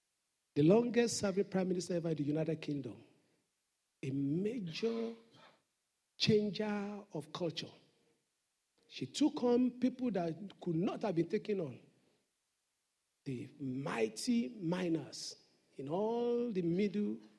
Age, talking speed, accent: 50-69, 115 wpm, Nigerian